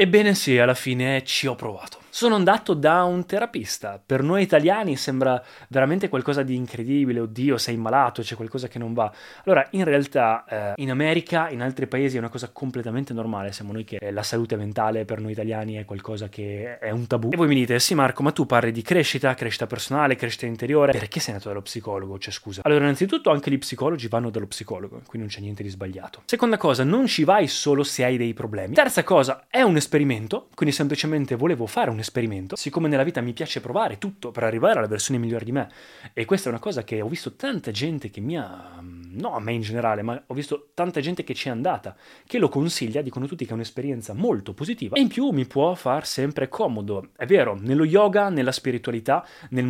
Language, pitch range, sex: Italian, 115-145 Hz, male